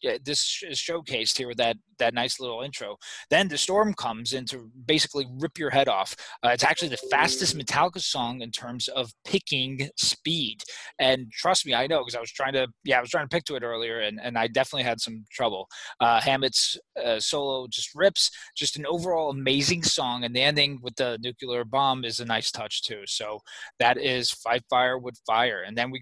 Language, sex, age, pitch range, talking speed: English, male, 20-39, 120-140 Hz, 215 wpm